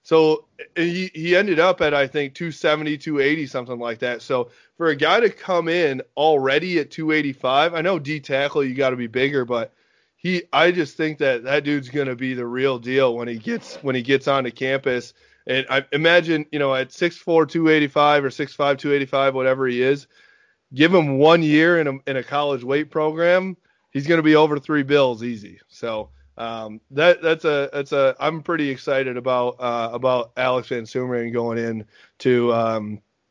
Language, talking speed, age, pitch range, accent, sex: English, 200 wpm, 20-39, 130-165 Hz, American, male